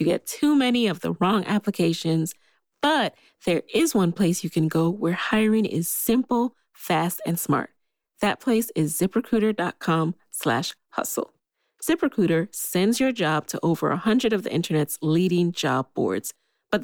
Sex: female